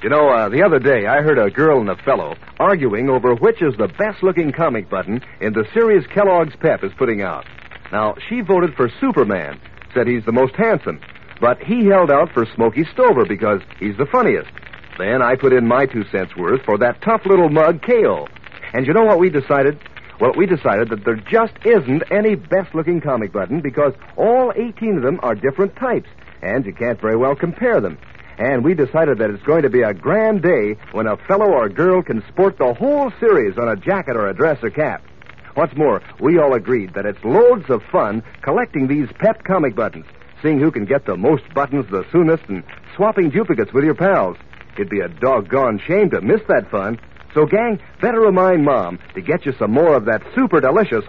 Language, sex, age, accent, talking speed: English, male, 60-79, American, 210 wpm